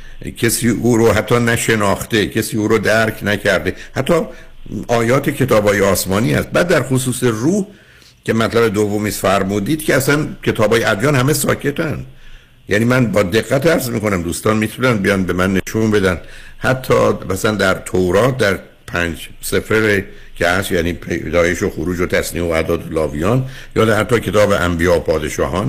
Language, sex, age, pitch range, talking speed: Persian, male, 60-79, 95-125 Hz, 155 wpm